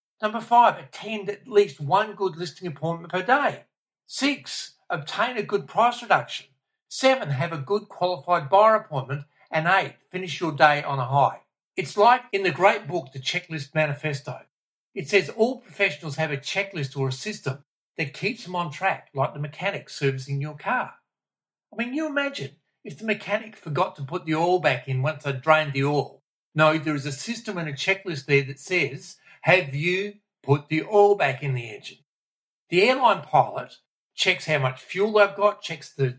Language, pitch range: English, 135-195 Hz